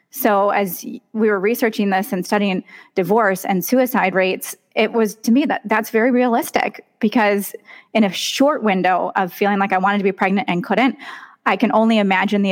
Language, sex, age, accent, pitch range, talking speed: English, female, 20-39, American, 195-245 Hz, 190 wpm